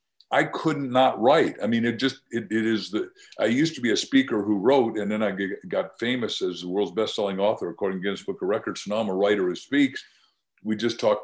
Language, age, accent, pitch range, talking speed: English, 50-69, American, 105-145 Hz, 250 wpm